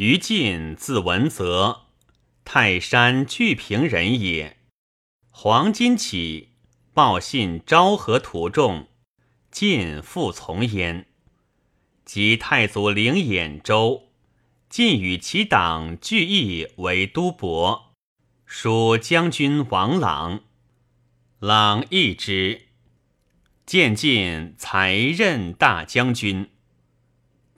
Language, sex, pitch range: Chinese, male, 95-125 Hz